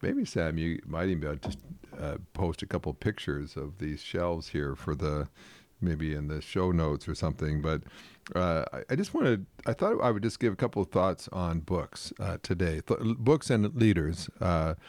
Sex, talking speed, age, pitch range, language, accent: male, 200 wpm, 50-69, 80-95 Hz, English, American